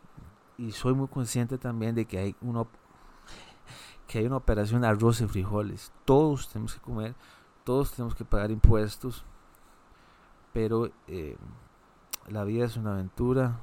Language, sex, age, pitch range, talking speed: Spanish, male, 30-49, 100-120 Hz, 145 wpm